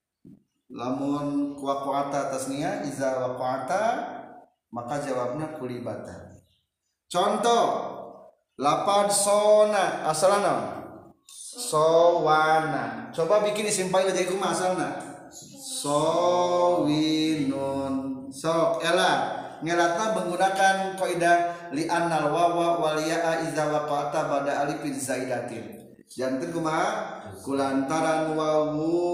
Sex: male